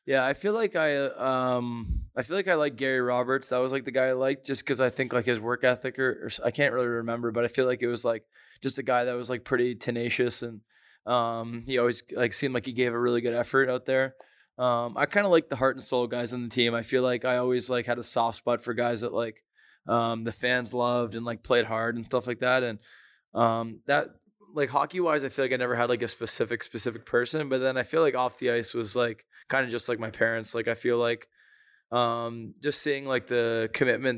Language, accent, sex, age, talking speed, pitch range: English, American, male, 20-39, 260 wpm, 115-130 Hz